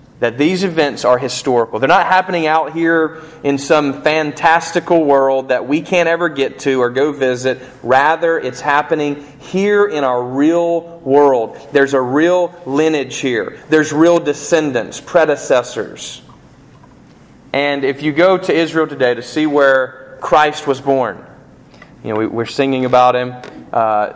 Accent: American